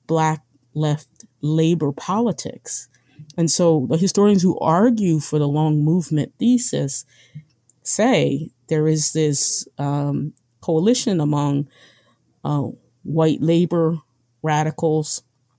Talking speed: 100 wpm